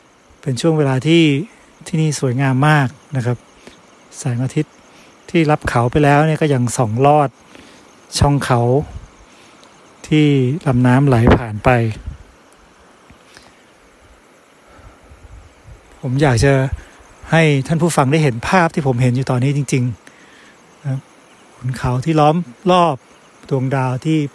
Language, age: Thai, 60-79